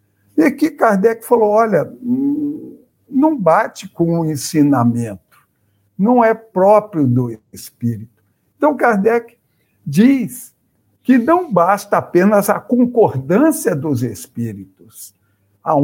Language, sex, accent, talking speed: Portuguese, male, Brazilian, 100 wpm